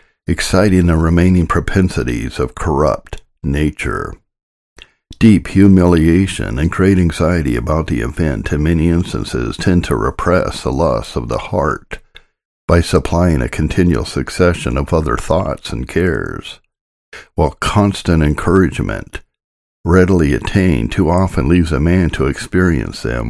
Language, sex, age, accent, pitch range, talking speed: English, male, 60-79, American, 70-95 Hz, 125 wpm